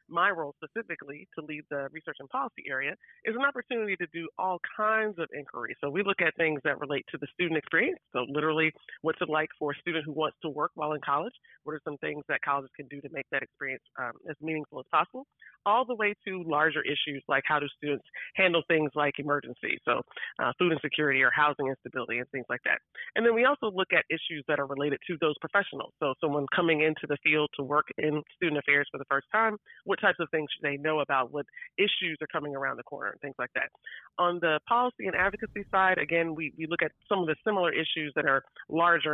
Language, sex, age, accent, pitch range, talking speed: English, female, 30-49, American, 145-185 Hz, 235 wpm